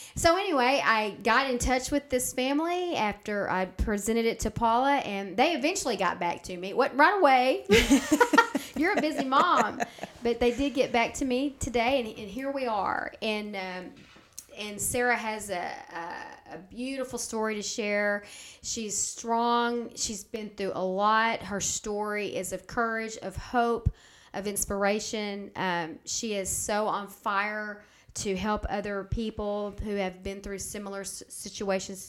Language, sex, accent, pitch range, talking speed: English, female, American, 185-230 Hz, 160 wpm